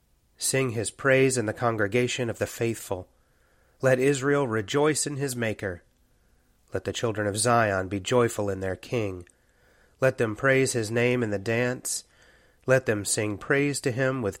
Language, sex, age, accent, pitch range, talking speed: English, male, 30-49, American, 100-125 Hz, 165 wpm